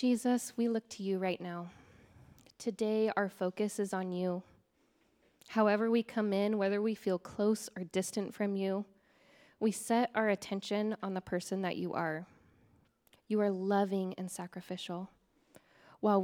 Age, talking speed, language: 10-29, 150 wpm, English